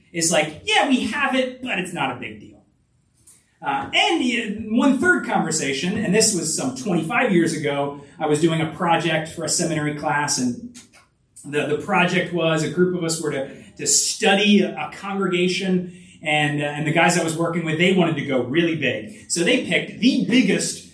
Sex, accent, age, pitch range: male, American, 30-49, 155-235 Hz